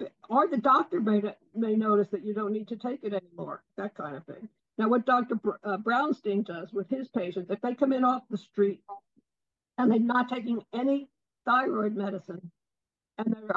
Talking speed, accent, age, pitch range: 190 wpm, American, 60-79, 200-240 Hz